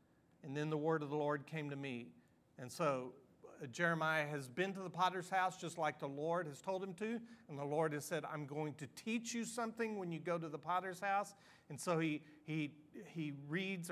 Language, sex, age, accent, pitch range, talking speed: English, male, 40-59, American, 150-185 Hz, 220 wpm